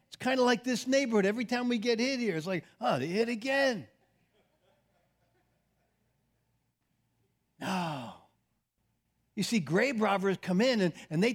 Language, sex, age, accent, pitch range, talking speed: English, male, 50-69, American, 170-265 Hz, 150 wpm